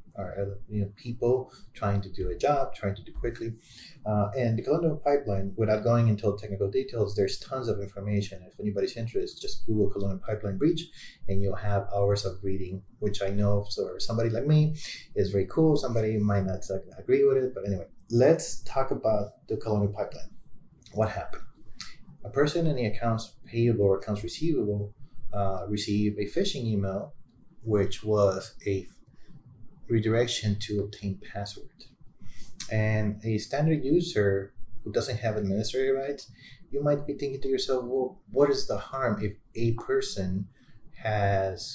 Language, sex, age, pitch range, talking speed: English, male, 30-49, 100-125 Hz, 160 wpm